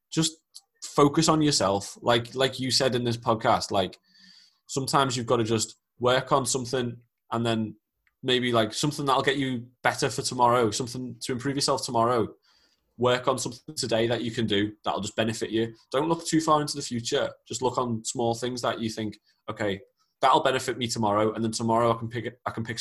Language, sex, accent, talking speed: English, male, British, 205 wpm